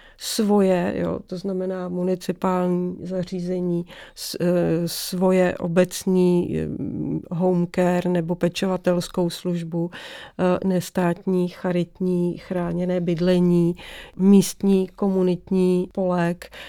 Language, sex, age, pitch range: English, female, 40-59, 175-195 Hz